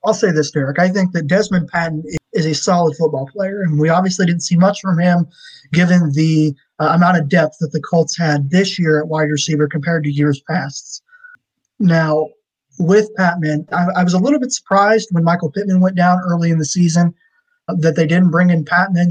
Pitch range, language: 160-190 Hz, English